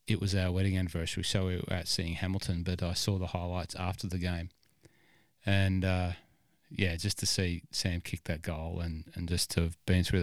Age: 30-49